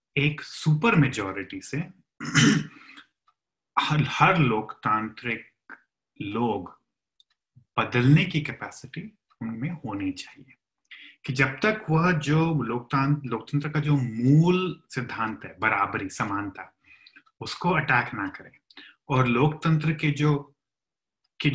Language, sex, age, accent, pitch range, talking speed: Hindi, male, 30-49, native, 115-155 Hz, 100 wpm